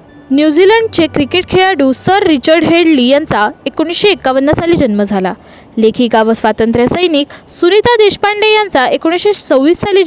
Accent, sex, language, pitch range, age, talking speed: native, female, Marathi, 230-360 Hz, 20-39, 120 wpm